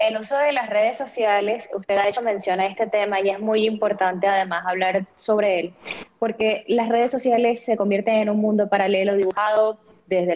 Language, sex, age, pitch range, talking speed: Spanish, female, 10-29, 185-225 Hz, 190 wpm